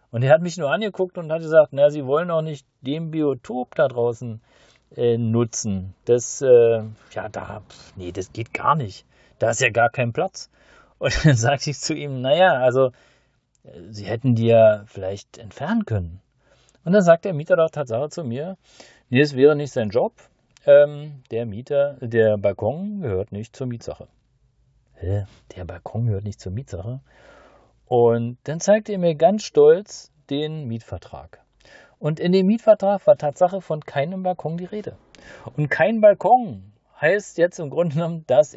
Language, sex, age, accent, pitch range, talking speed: German, male, 40-59, German, 115-175 Hz, 170 wpm